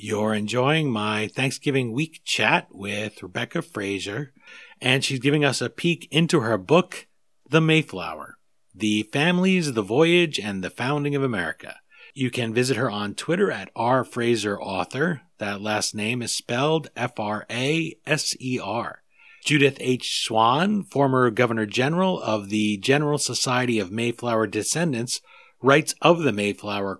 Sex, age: male, 40-59